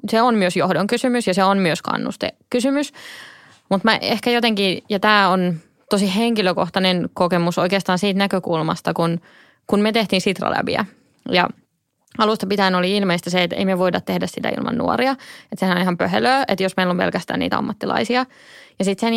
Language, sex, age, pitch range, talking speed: Finnish, female, 20-39, 180-210 Hz, 180 wpm